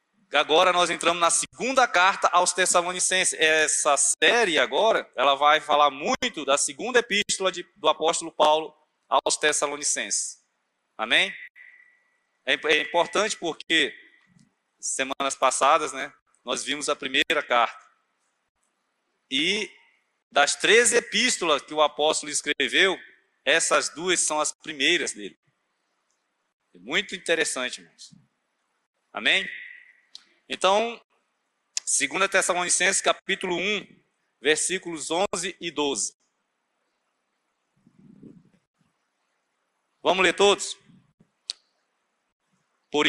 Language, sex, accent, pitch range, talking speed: Portuguese, male, Brazilian, 155-220 Hz, 95 wpm